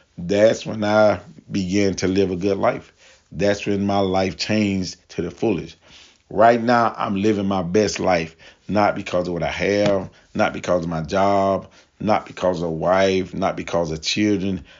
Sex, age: male, 40-59